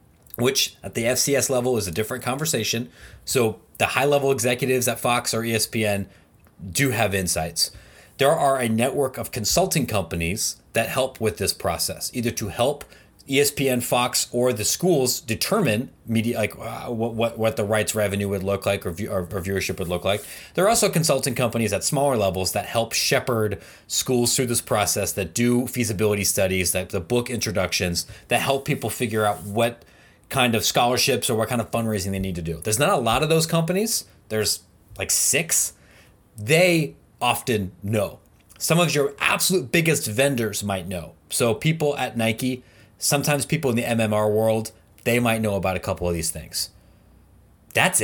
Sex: male